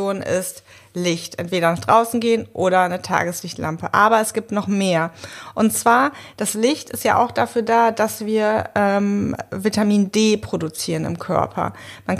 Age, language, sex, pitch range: 30-49, German, female, 195-230 Hz